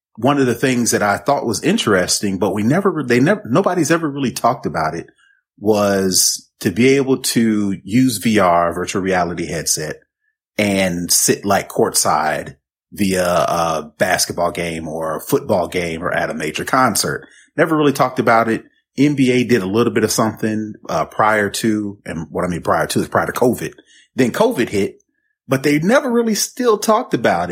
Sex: male